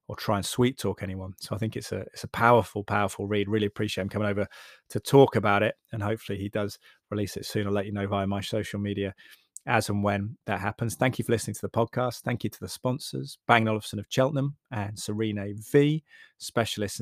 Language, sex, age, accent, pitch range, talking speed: English, male, 30-49, British, 100-115 Hz, 230 wpm